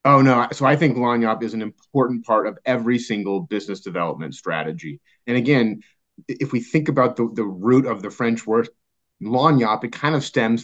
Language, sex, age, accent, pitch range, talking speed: English, male, 30-49, American, 105-130 Hz, 190 wpm